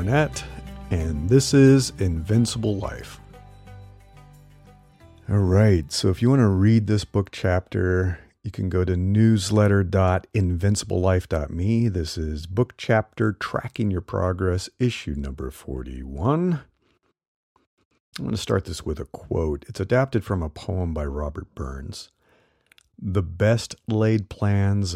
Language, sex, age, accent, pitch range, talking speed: English, male, 50-69, American, 90-115 Hz, 125 wpm